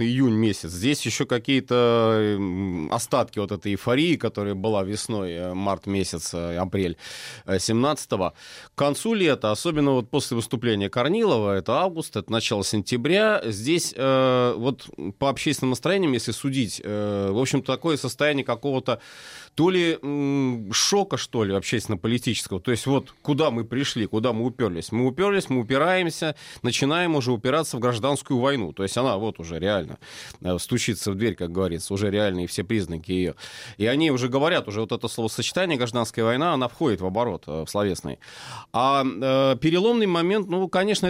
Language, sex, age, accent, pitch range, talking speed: Russian, male, 30-49, native, 105-140 Hz, 150 wpm